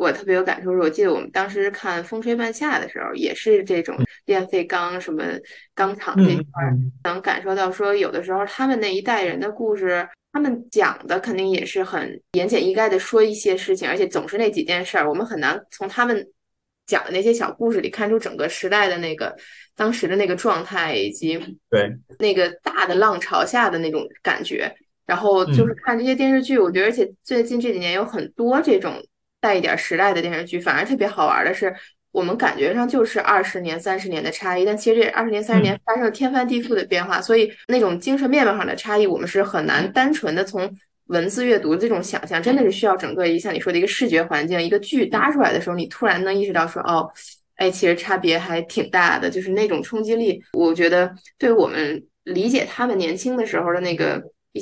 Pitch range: 175-240 Hz